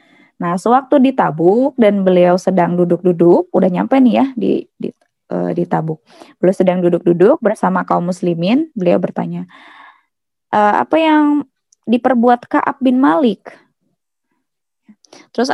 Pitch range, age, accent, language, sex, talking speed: 185-255 Hz, 20-39, native, Indonesian, female, 125 wpm